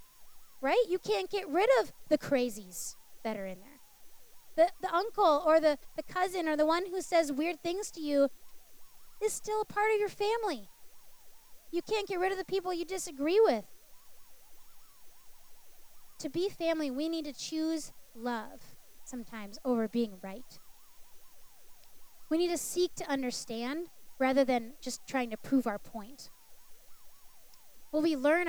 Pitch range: 250-345 Hz